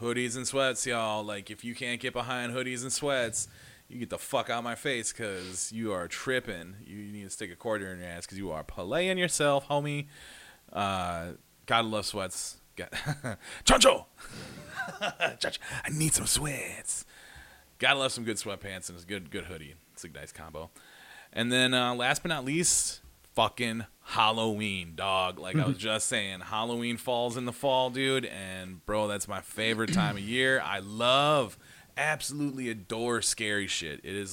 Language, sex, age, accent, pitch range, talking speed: English, male, 30-49, American, 90-120 Hz, 175 wpm